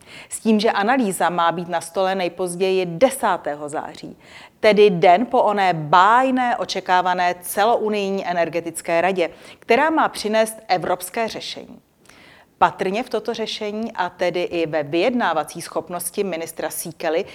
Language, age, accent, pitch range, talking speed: Czech, 40-59, native, 170-220 Hz, 130 wpm